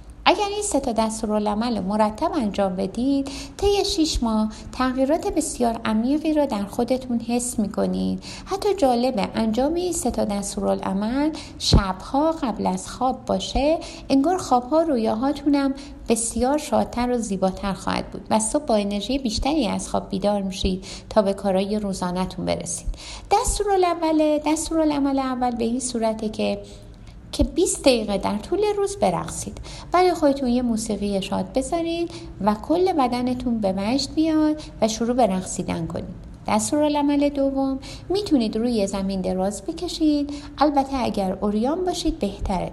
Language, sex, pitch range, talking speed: Persian, female, 205-295 Hz, 140 wpm